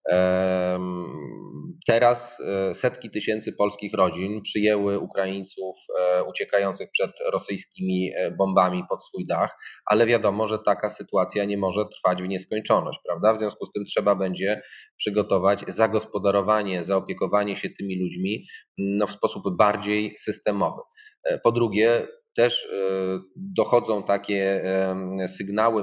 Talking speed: 110 wpm